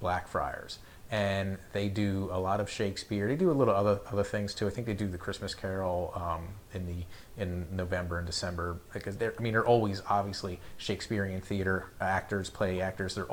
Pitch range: 95-105 Hz